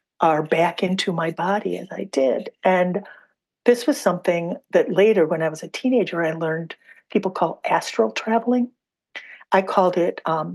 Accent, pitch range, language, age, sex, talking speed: American, 170-200 Hz, English, 50-69, female, 165 wpm